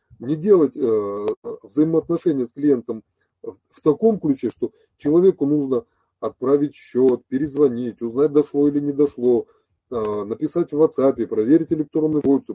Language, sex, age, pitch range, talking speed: Russian, male, 30-49, 125-170 Hz, 130 wpm